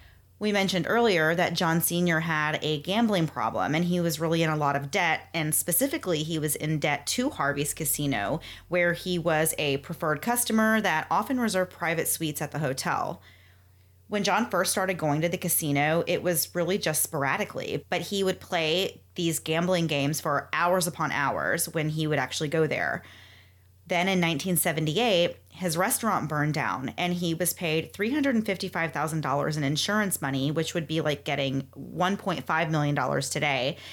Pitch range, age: 145-180 Hz, 30-49